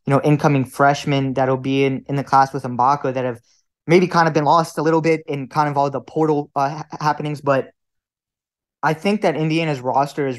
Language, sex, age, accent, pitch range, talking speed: English, male, 20-39, American, 135-150 Hz, 215 wpm